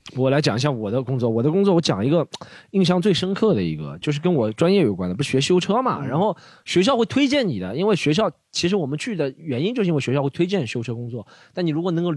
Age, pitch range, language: 20-39, 130-180 Hz, Chinese